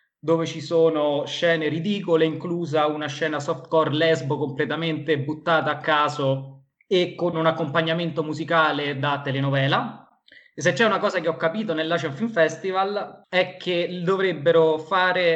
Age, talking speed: 20-39, 140 wpm